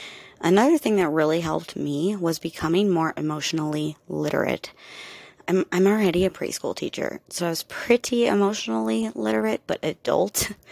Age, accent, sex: 30-49, American, female